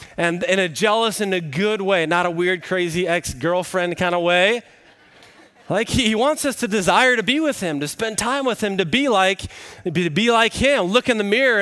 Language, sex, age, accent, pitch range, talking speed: English, male, 20-39, American, 175-215 Hz, 215 wpm